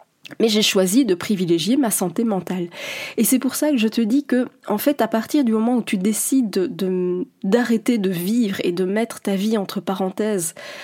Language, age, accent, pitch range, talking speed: French, 20-39, French, 190-240 Hz, 210 wpm